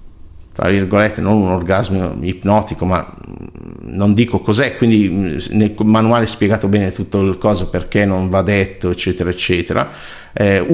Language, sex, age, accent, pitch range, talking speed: Italian, male, 50-69, native, 90-115 Hz, 140 wpm